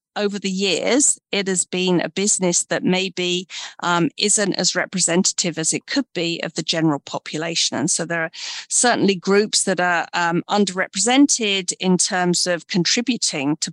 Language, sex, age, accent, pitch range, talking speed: English, female, 40-59, British, 170-210 Hz, 160 wpm